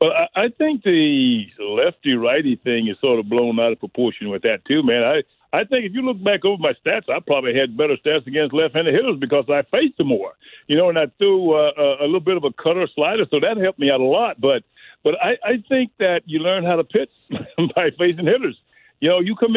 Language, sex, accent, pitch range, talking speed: English, male, American, 150-205 Hz, 240 wpm